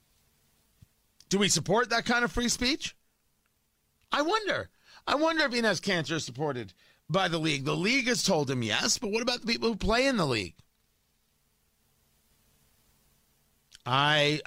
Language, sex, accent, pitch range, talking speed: English, male, American, 130-185 Hz, 155 wpm